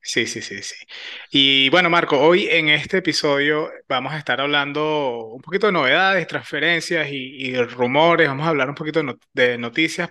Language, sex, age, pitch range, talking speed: Spanish, male, 20-39, 130-165 Hz, 180 wpm